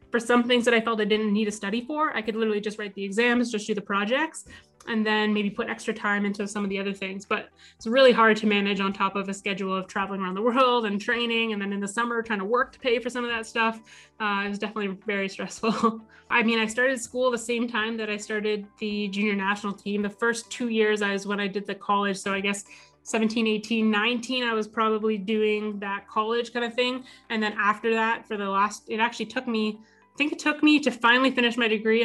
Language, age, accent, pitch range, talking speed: English, 20-39, American, 205-230 Hz, 255 wpm